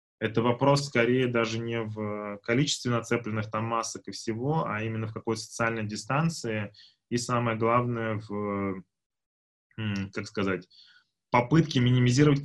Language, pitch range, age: Russian, 110-125 Hz, 20-39